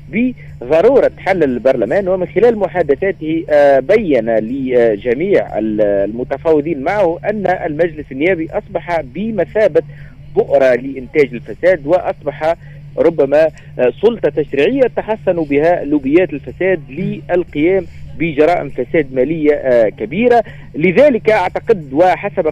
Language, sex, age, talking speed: Arabic, male, 50-69, 90 wpm